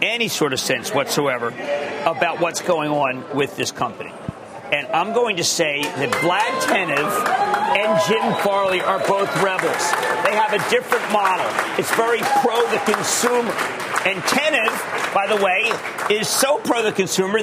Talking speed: 145 wpm